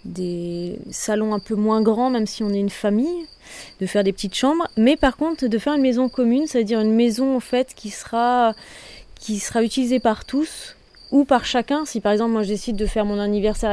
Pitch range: 205-255 Hz